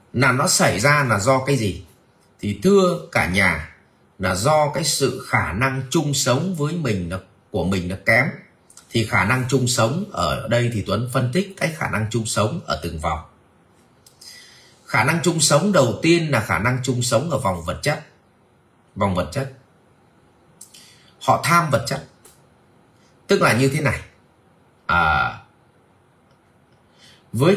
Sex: male